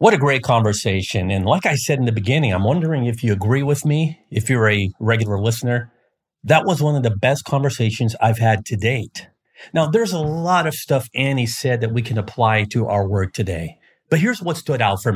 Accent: American